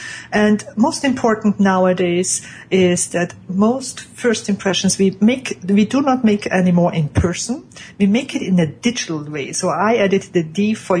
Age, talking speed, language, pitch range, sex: 50-69, 170 wpm, English, 180-220 Hz, female